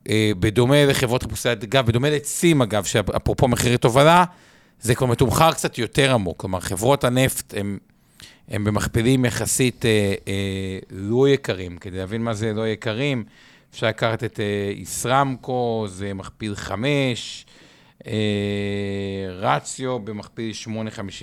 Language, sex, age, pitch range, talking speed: Hebrew, male, 50-69, 110-135 Hz, 115 wpm